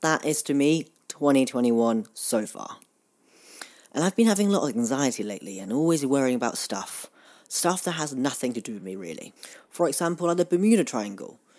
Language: English